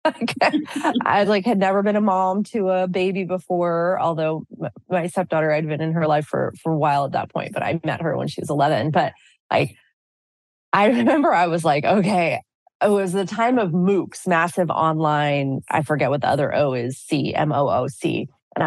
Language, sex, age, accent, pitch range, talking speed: English, female, 20-39, American, 155-205 Hz, 195 wpm